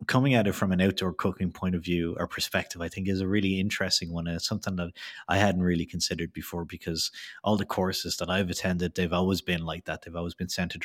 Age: 30-49